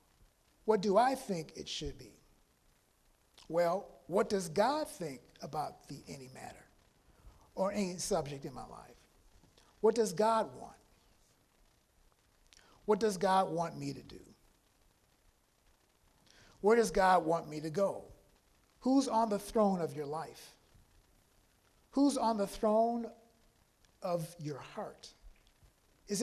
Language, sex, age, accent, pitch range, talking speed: English, male, 50-69, American, 155-220 Hz, 125 wpm